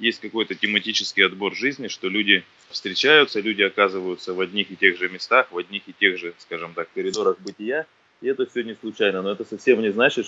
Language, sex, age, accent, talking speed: Russian, male, 20-39, native, 205 wpm